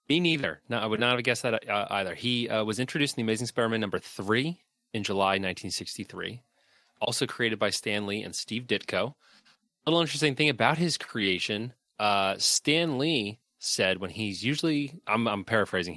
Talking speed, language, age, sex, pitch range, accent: 180 wpm, English, 30-49, male, 95-125 Hz, American